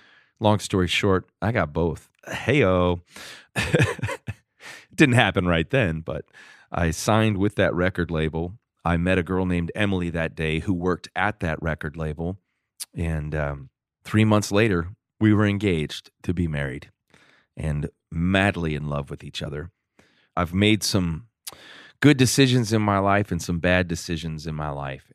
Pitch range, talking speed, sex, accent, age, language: 80-100 Hz, 155 wpm, male, American, 30-49, English